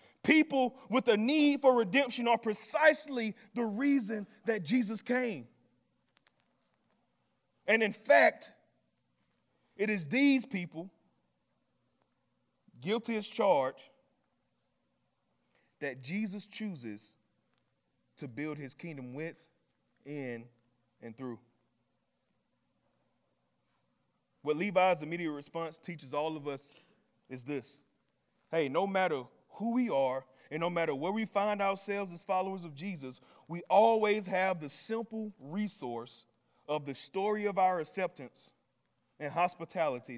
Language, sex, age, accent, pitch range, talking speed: English, male, 30-49, American, 140-210 Hz, 110 wpm